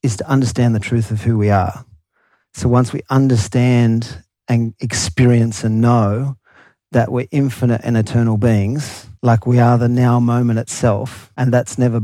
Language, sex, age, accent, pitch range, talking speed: English, male, 40-59, Australian, 110-125 Hz, 165 wpm